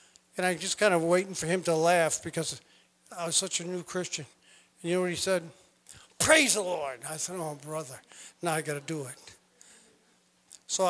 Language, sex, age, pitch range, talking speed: English, male, 50-69, 155-190 Hz, 210 wpm